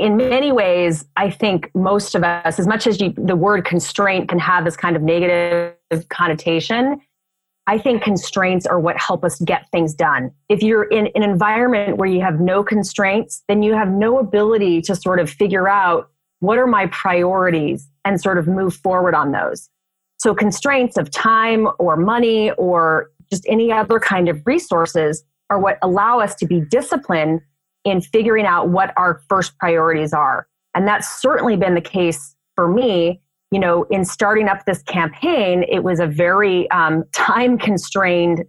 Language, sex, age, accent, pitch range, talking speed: English, female, 30-49, American, 170-205 Hz, 175 wpm